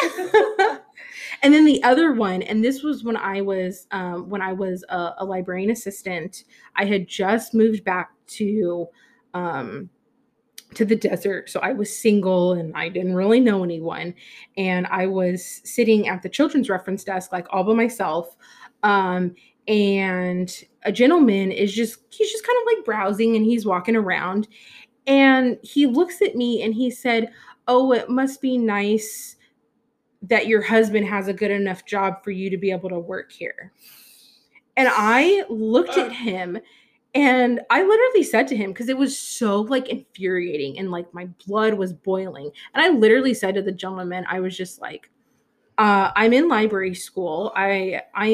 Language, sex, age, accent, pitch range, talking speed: English, female, 20-39, American, 185-245 Hz, 170 wpm